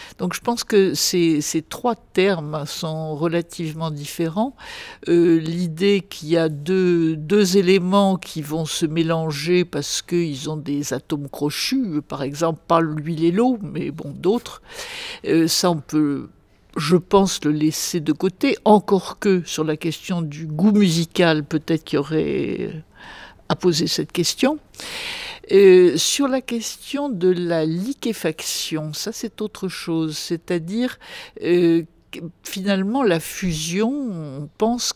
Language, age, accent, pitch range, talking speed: French, 60-79, French, 160-210 Hz, 140 wpm